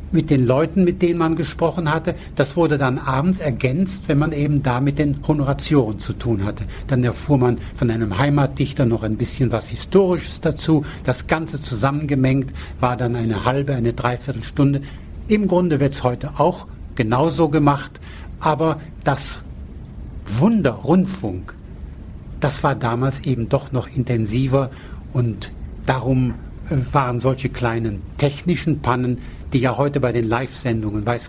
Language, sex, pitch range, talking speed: German, male, 120-145 Hz, 150 wpm